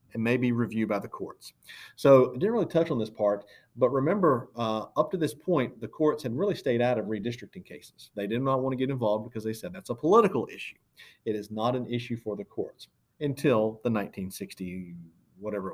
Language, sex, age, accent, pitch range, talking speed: English, male, 40-59, American, 100-125 Hz, 215 wpm